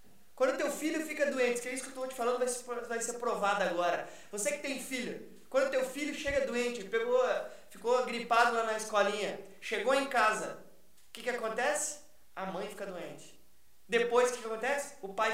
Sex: male